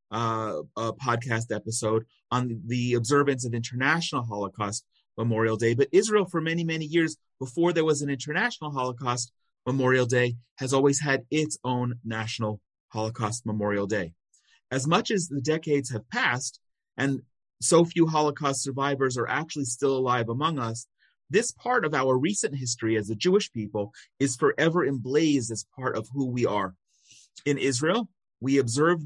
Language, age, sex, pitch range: English, 30-49, male, 115-150 Hz